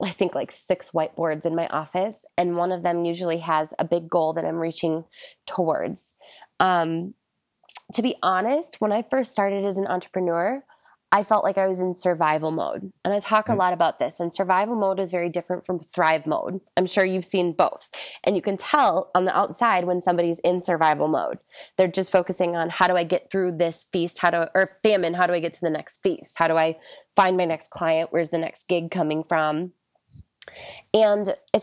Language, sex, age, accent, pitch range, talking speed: English, female, 20-39, American, 170-205 Hz, 215 wpm